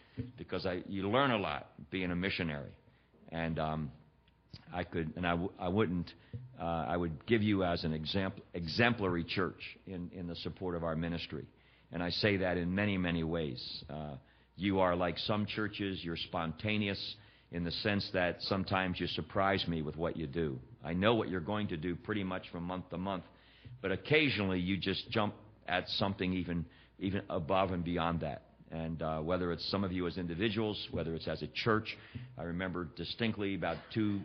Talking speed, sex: 190 wpm, male